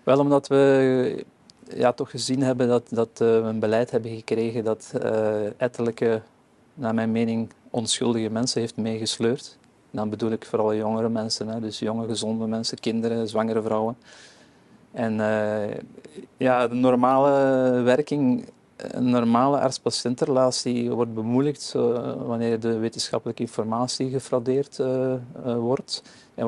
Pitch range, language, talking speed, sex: 110-125 Hz, Dutch, 130 wpm, male